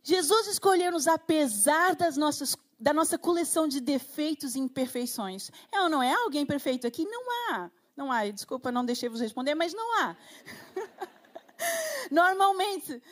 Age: 40-59